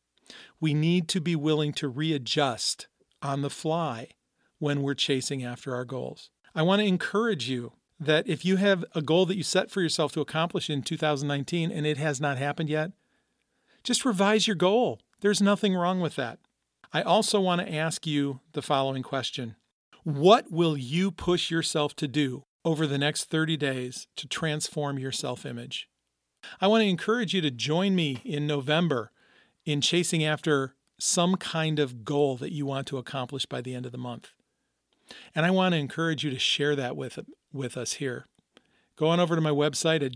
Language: English